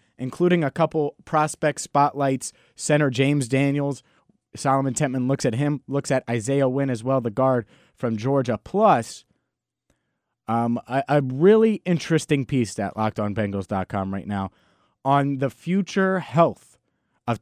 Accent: American